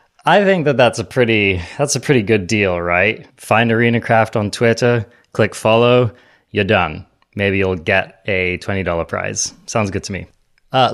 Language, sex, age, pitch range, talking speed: English, male, 20-39, 95-115 Hz, 170 wpm